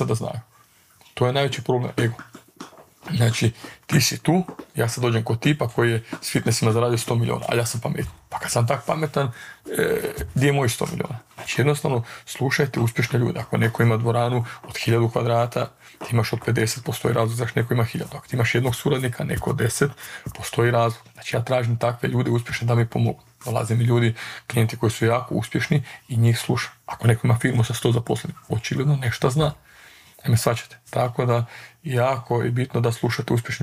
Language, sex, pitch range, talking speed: Croatian, male, 115-140 Hz, 195 wpm